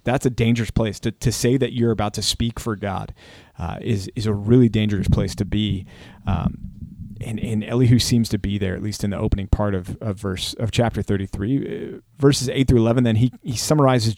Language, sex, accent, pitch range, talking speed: English, male, American, 105-125 Hz, 215 wpm